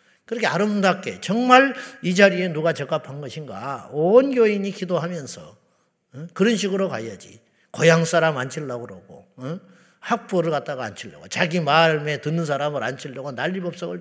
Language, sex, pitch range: Korean, male, 150-225 Hz